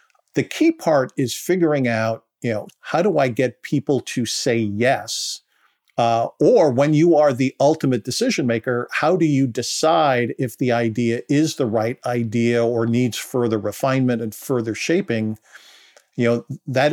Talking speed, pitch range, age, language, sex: 165 wpm, 115-135 Hz, 50-69, English, male